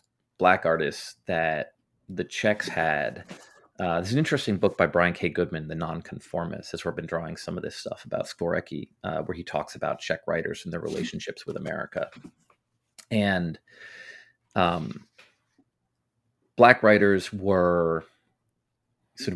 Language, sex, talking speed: English, male, 145 wpm